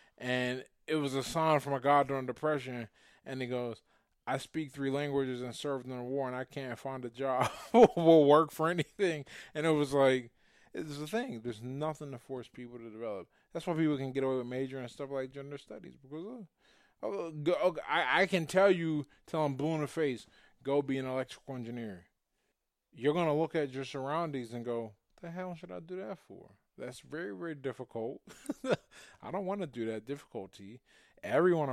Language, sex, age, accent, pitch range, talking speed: English, male, 20-39, American, 125-165 Hz, 195 wpm